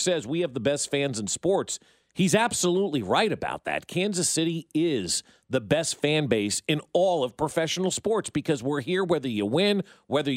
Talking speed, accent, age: 185 wpm, American, 40-59